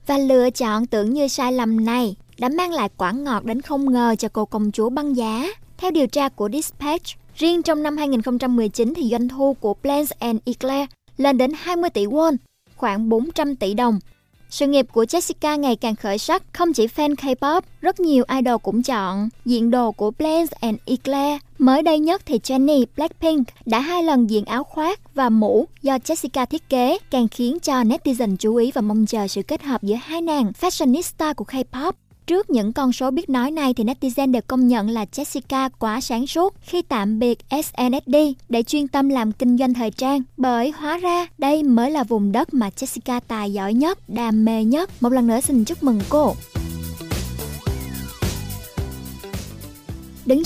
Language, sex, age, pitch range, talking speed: Vietnamese, male, 20-39, 225-290 Hz, 190 wpm